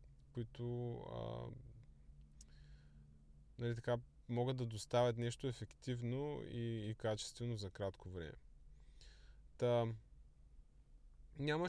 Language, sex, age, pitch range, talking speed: Bulgarian, male, 20-39, 105-125 Hz, 85 wpm